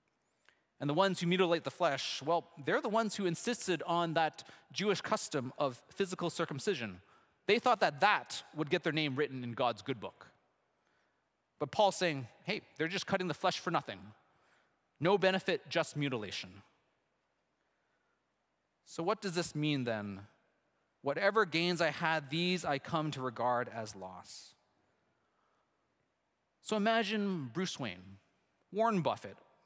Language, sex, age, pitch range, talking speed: English, male, 30-49, 150-220 Hz, 145 wpm